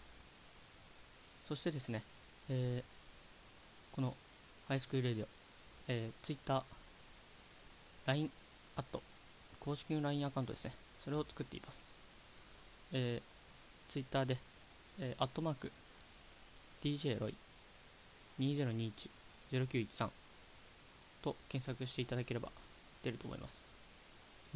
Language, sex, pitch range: Japanese, male, 115-135 Hz